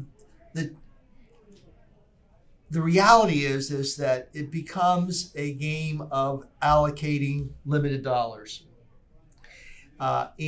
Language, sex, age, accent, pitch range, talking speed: English, male, 50-69, American, 135-165 Hz, 85 wpm